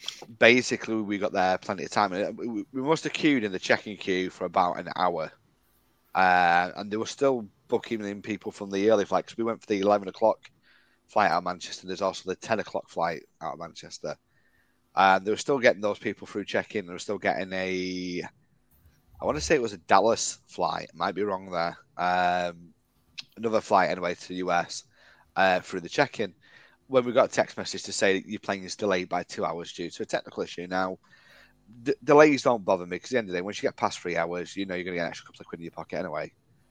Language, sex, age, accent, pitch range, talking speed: English, male, 30-49, British, 90-110 Hz, 235 wpm